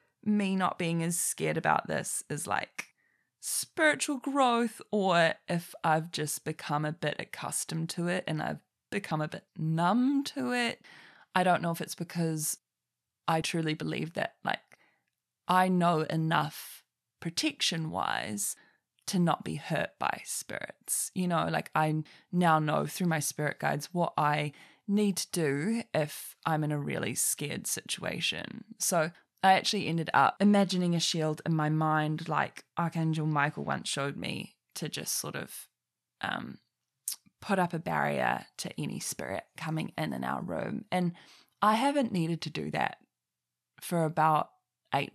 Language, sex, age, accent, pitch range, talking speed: English, female, 20-39, Australian, 155-200 Hz, 155 wpm